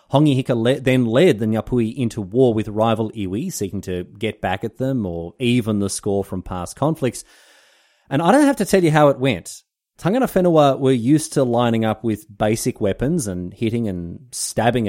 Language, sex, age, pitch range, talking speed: English, male, 30-49, 100-140 Hz, 195 wpm